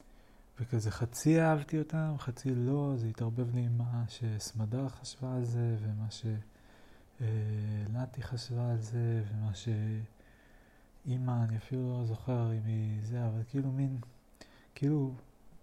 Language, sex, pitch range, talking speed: Hebrew, male, 110-125 Hz, 130 wpm